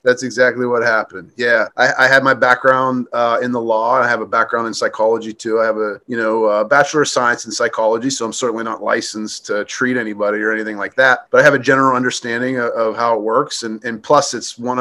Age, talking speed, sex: 30-49, 245 wpm, male